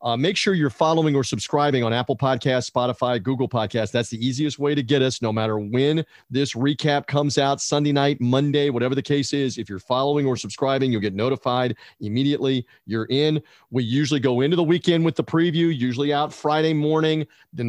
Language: English